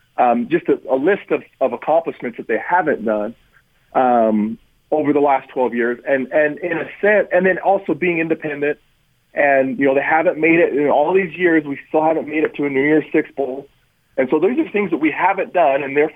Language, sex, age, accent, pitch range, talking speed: English, male, 40-59, American, 135-200 Hz, 225 wpm